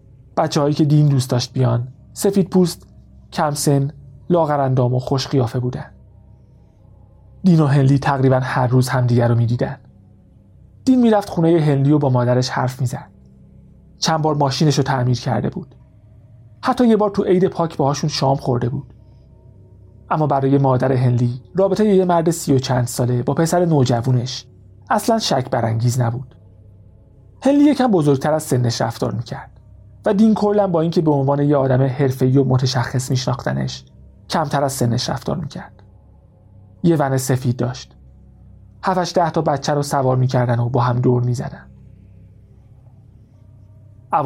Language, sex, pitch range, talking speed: Persian, male, 115-150 Hz, 155 wpm